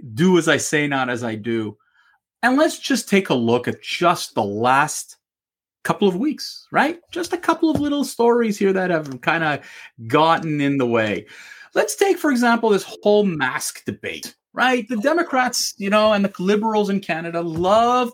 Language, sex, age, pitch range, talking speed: English, male, 30-49, 160-245 Hz, 185 wpm